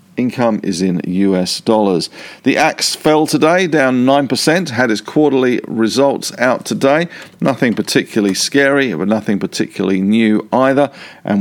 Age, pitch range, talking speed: 50-69, 100-140 Hz, 135 wpm